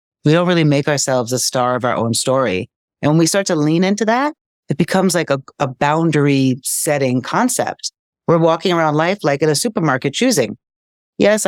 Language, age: English, 40-59